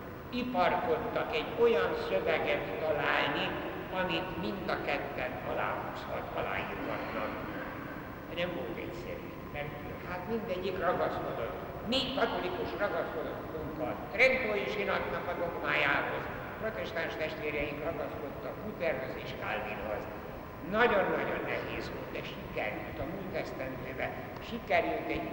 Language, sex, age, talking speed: Hungarian, male, 60-79, 100 wpm